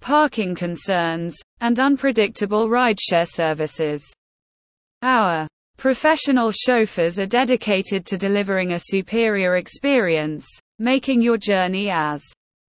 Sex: female